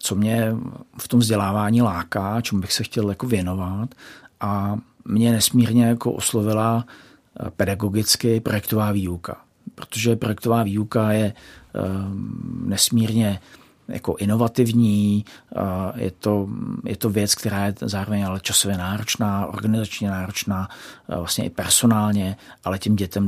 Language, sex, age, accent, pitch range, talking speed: Czech, male, 50-69, native, 100-110 Hz, 125 wpm